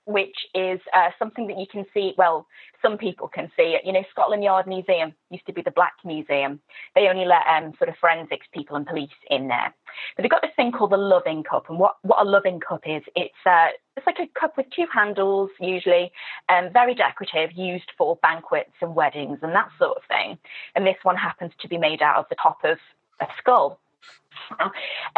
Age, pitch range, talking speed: 20-39, 170-220 Hz, 215 wpm